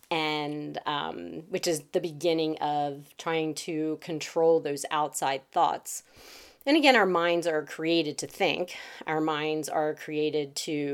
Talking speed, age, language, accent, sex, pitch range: 145 wpm, 30-49, English, American, female, 140-160 Hz